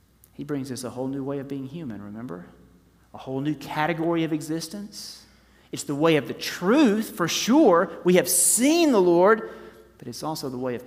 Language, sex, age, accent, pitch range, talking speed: English, male, 40-59, American, 115-165 Hz, 200 wpm